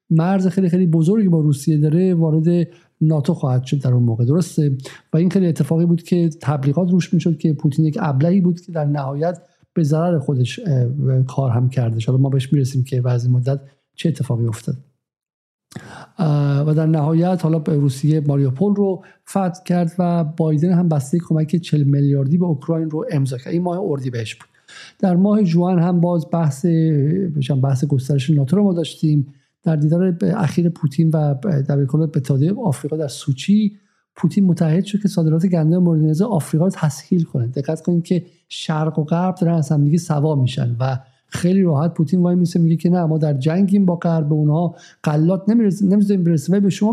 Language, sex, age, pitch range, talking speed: Persian, male, 50-69, 145-175 Hz, 180 wpm